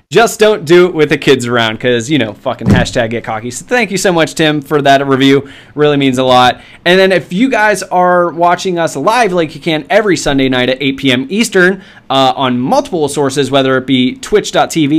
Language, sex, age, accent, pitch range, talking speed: English, male, 20-39, American, 130-180 Hz, 220 wpm